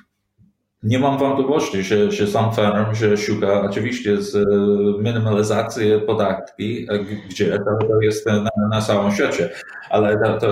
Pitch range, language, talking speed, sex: 100-110 Hz, Polish, 120 wpm, male